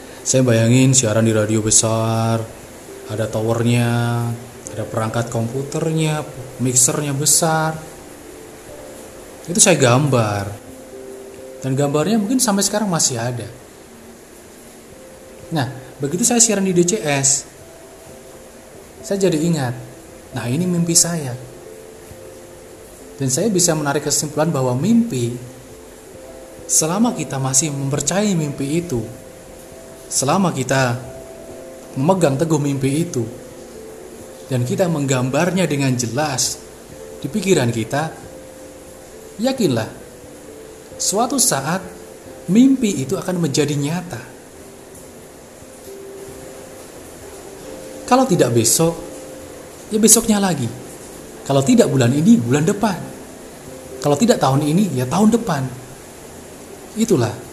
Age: 20-39